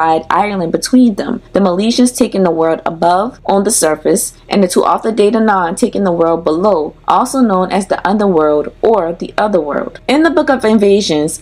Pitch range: 170-215 Hz